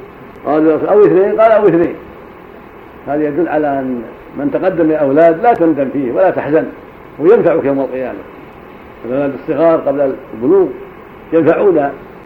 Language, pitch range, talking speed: Arabic, 155-190 Hz, 125 wpm